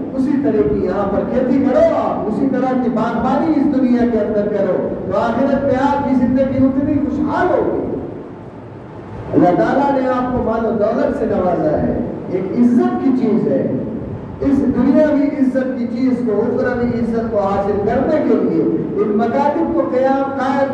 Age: 50-69